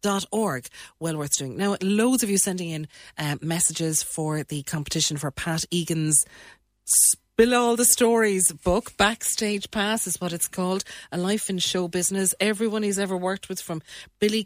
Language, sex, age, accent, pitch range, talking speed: English, female, 30-49, Irish, 160-210 Hz, 170 wpm